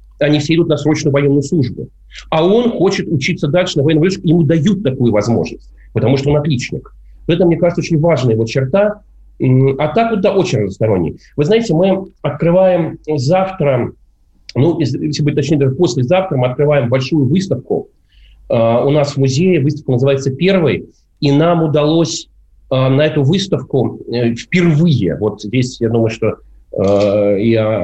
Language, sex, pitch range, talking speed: Russian, male, 125-165 Hz, 155 wpm